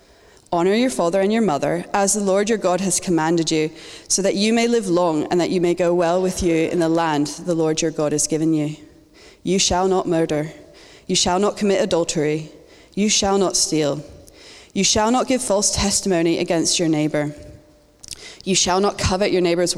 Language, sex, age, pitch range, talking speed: English, female, 20-39, 155-190 Hz, 200 wpm